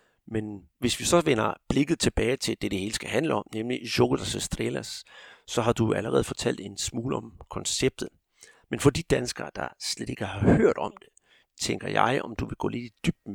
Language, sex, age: Danish, male, 60-79